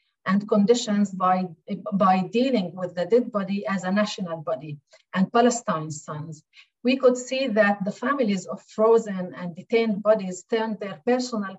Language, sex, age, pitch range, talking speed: English, female, 40-59, 180-225 Hz, 155 wpm